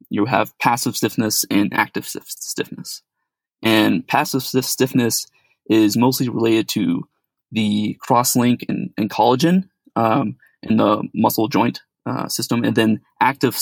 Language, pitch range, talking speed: English, 105-130 Hz, 130 wpm